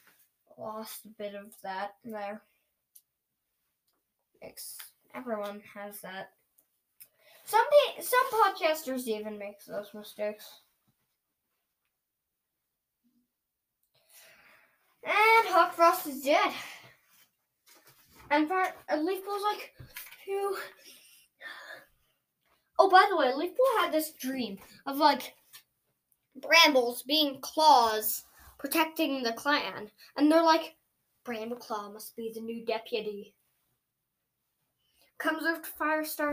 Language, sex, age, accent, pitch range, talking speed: English, female, 10-29, American, 245-355 Hz, 95 wpm